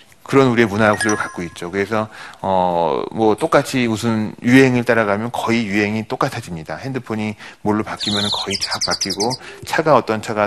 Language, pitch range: Korean, 100-130 Hz